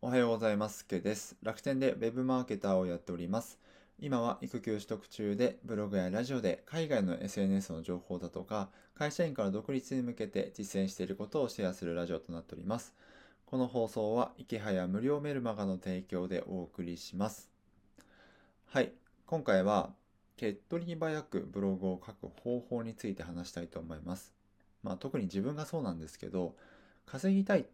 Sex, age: male, 20-39